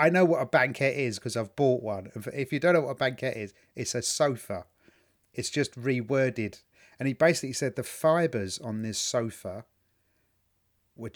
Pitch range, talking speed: 110-155 Hz, 185 wpm